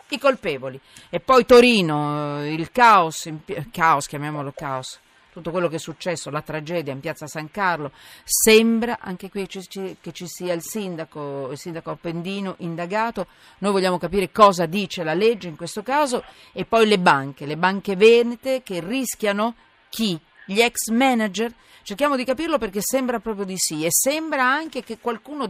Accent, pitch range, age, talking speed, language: native, 145-210 Hz, 40-59, 165 wpm, Italian